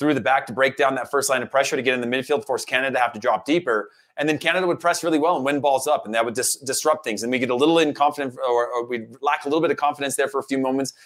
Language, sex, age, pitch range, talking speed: English, male, 30-49, 125-170 Hz, 340 wpm